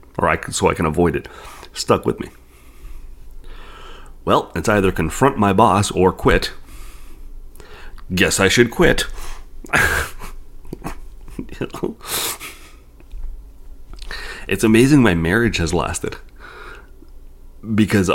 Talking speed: 95 wpm